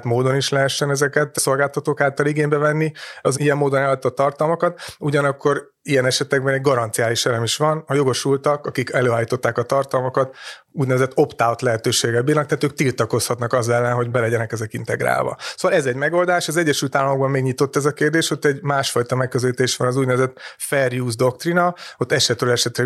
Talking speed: 175 wpm